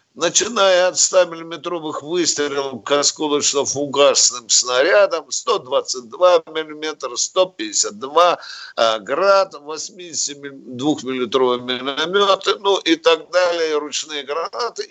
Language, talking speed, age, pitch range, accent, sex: Russian, 75 wpm, 50-69, 130-190 Hz, native, male